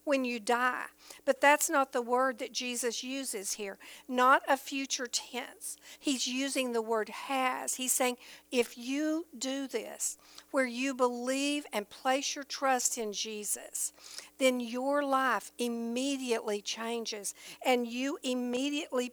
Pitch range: 220-270 Hz